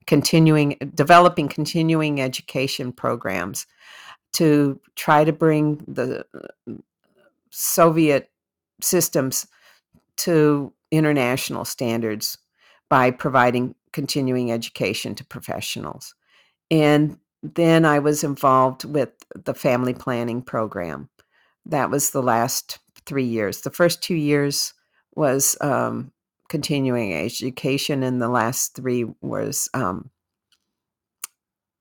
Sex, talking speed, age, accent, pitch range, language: female, 100 wpm, 50-69, American, 130-155 Hz, English